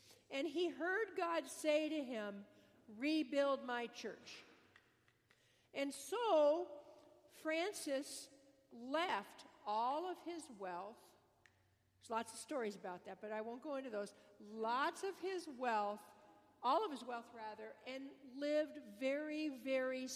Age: 50-69